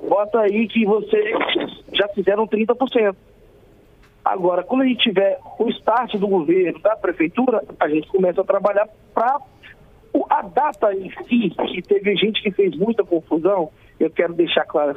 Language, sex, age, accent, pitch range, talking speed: Portuguese, male, 40-59, Brazilian, 205-265 Hz, 155 wpm